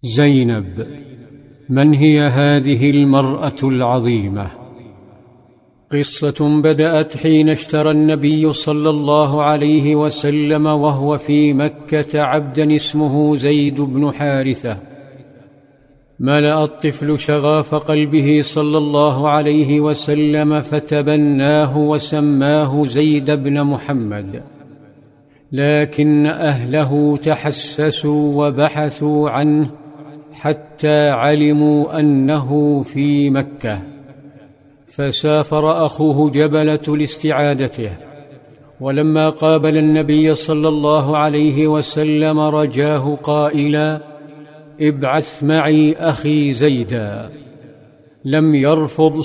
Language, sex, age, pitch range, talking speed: Arabic, male, 50-69, 145-150 Hz, 80 wpm